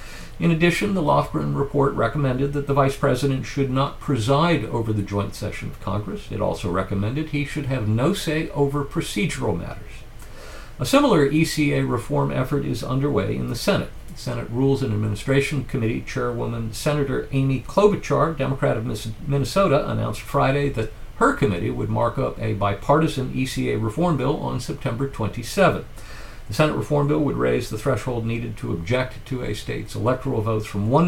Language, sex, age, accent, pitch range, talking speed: English, male, 50-69, American, 110-145 Hz, 165 wpm